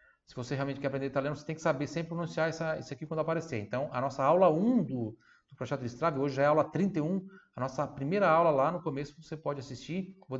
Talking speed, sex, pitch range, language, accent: 255 wpm, male, 125-155 Hz, Italian, Brazilian